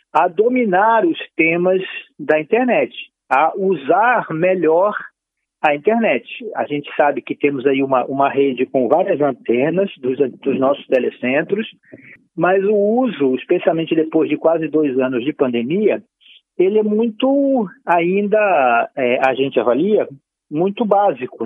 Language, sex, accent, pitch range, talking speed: Portuguese, male, Brazilian, 140-220 Hz, 135 wpm